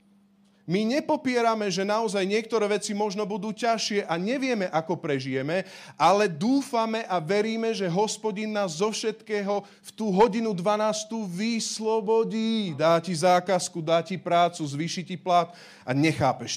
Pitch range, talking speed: 130-205 Hz, 140 wpm